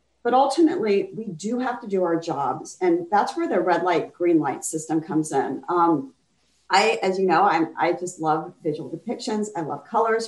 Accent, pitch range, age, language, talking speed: American, 200-320 Hz, 40-59, English, 200 wpm